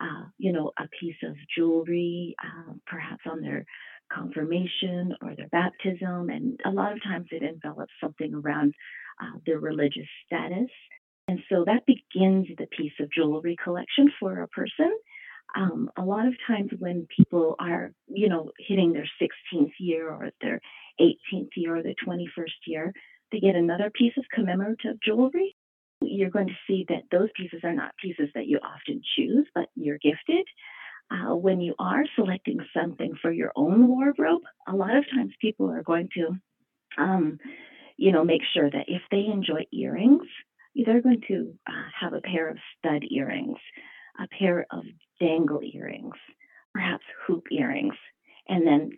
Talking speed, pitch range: 165 wpm, 170-255 Hz